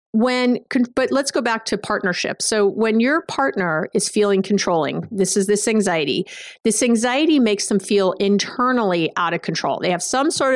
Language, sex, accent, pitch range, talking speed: English, female, American, 190-255 Hz, 175 wpm